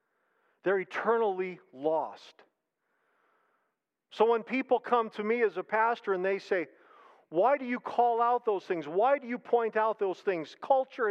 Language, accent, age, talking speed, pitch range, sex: English, American, 50-69, 160 wpm, 200-320 Hz, male